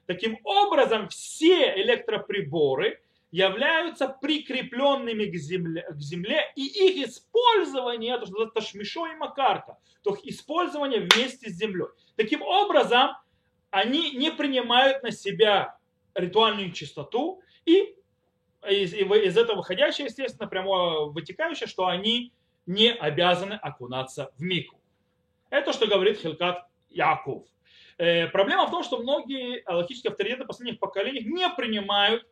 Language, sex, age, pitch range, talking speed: Russian, male, 30-49, 175-290 Hz, 115 wpm